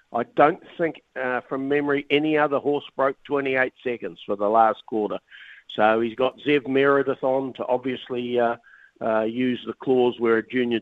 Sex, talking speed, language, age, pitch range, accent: male, 175 wpm, English, 50-69, 110-135 Hz, Australian